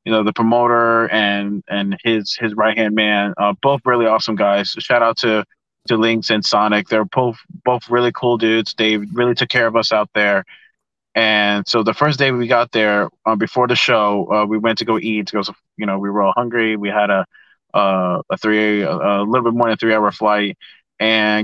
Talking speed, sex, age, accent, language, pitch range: 220 wpm, male, 30-49, American, English, 105-120 Hz